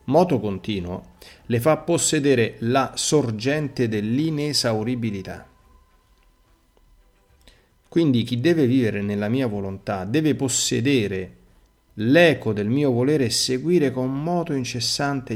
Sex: male